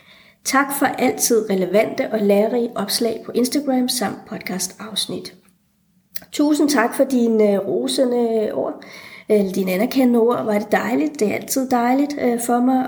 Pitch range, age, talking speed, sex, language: 200-235 Hz, 30-49, 140 wpm, female, Danish